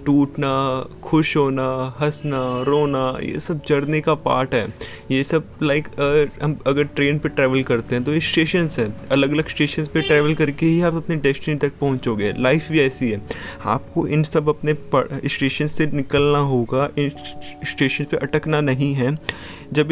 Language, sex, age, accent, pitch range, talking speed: Hindi, male, 20-39, native, 130-155 Hz, 170 wpm